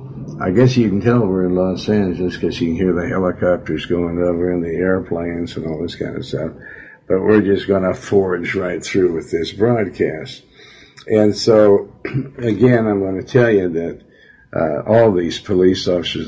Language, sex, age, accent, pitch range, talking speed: English, male, 60-79, American, 90-110 Hz, 190 wpm